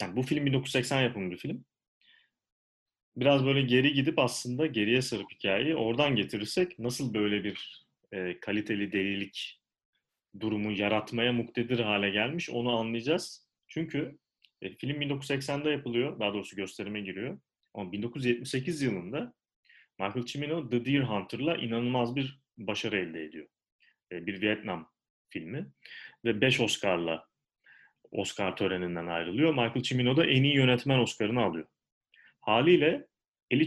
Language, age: Turkish, 40-59